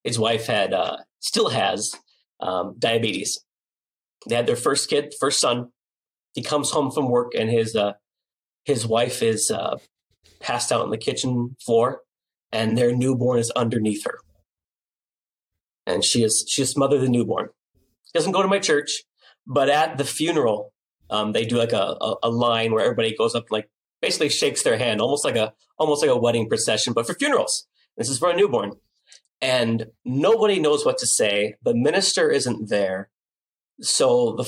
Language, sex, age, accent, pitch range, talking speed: English, male, 30-49, American, 115-155 Hz, 180 wpm